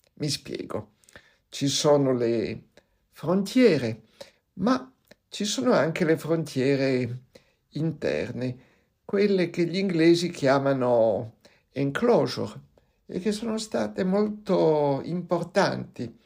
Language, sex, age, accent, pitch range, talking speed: Italian, male, 60-79, native, 125-195 Hz, 90 wpm